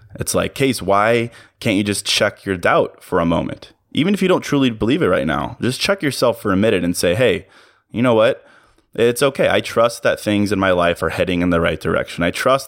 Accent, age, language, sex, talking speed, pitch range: American, 20-39, English, male, 240 wpm, 90-115 Hz